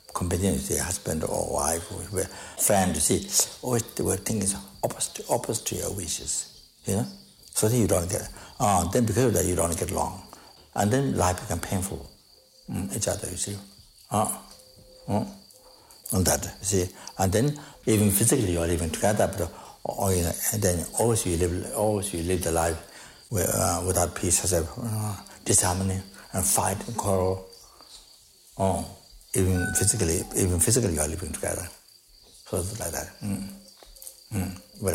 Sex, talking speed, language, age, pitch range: male, 165 wpm, English, 60-79, 90-105 Hz